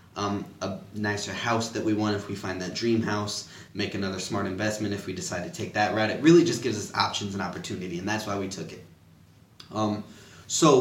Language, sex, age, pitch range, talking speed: English, male, 20-39, 100-115 Hz, 220 wpm